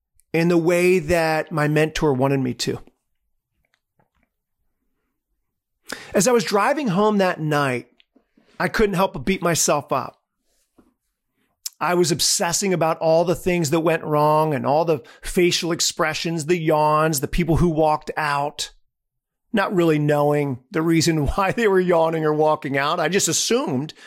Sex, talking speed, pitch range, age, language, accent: male, 150 wpm, 145-180 Hz, 40-59, English, American